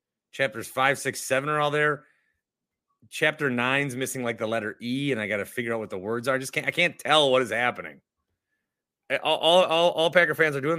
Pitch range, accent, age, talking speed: 110-155 Hz, American, 30-49, 220 wpm